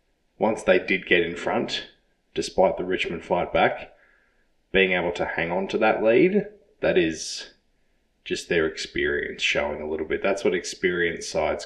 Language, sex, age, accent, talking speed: English, male, 20-39, Australian, 165 wpm